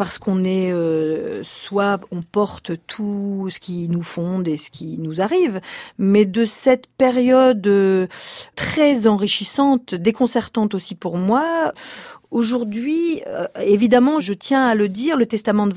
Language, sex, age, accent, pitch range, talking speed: French, female, 40-59, French, 175-230 Hz, 145 wpm